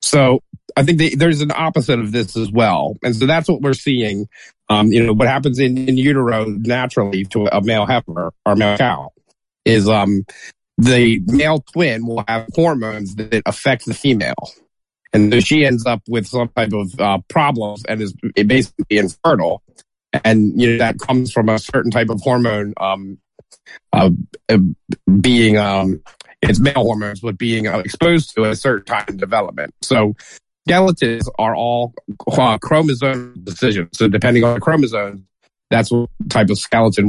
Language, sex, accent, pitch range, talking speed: English, male, American, 110-135 Hz, 170 wpm